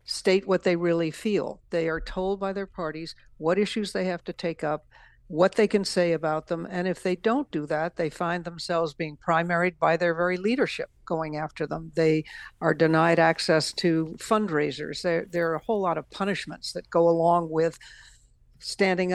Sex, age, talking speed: female, 60-79, 190 wpm